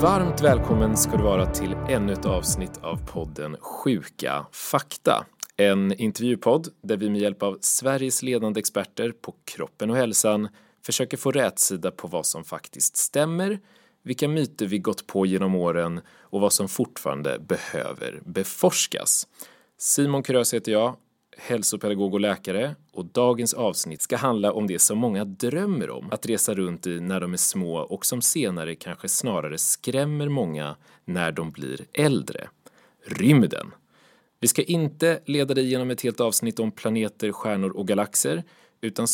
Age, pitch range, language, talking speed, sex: 30-49, 100-135 Hz, Swedish, 155 wpm, male